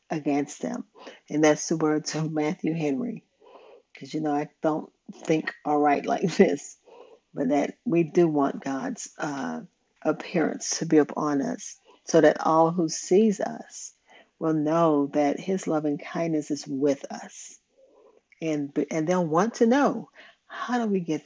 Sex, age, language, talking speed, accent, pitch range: female, 50-69, English, 160 wpm, American, 155-210 Hz